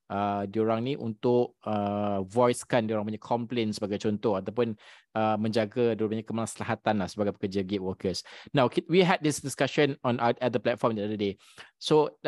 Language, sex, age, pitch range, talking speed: Malay, male, 20-39, 110-130 Hz, 175 wpm